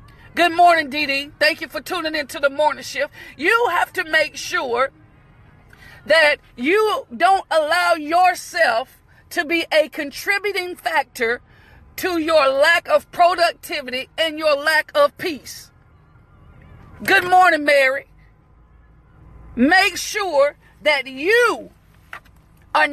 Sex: female